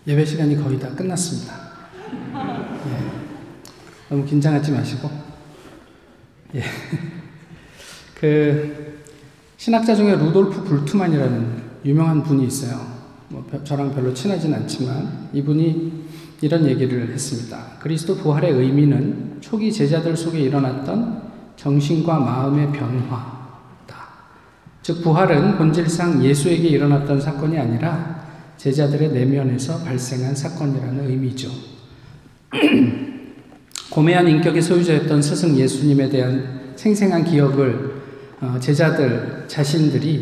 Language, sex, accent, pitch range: Korean, male, native, 135-165 Hz